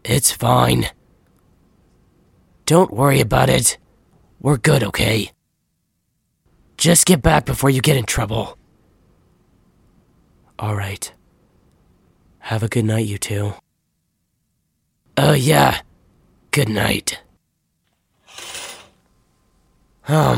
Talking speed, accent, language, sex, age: 85 wpm, American, English, male, 30-49